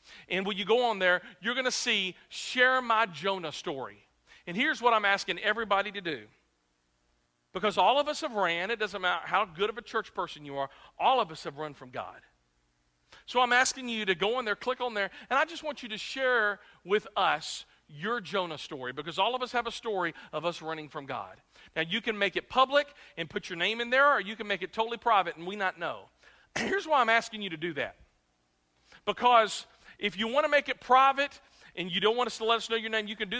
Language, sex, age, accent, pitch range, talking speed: English, male, 50-69, American, 170-245 Hz, 245 wpm